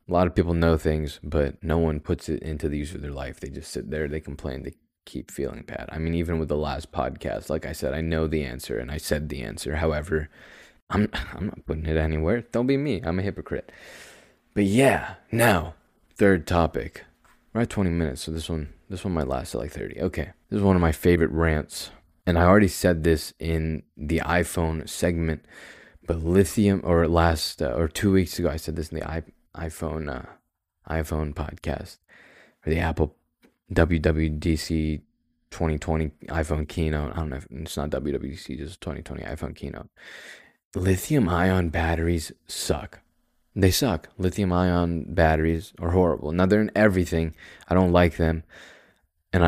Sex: male